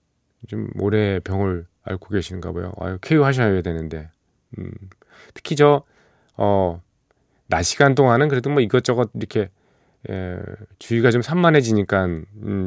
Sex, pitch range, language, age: male, 90-115 Hz, Korean, 40-59